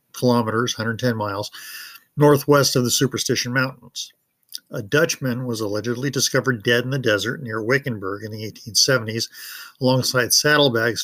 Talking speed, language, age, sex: 130 wpm, English, 50-69, male